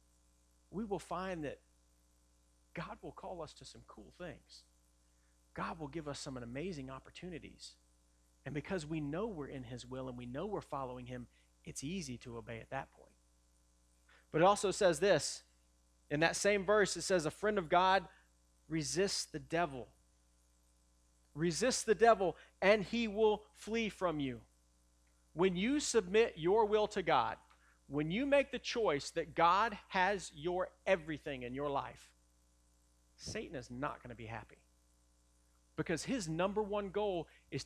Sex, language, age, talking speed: male, English, 40-59, 160 wpm